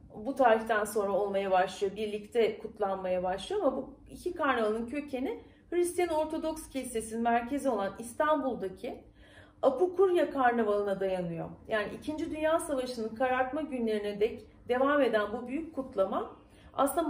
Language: Turkish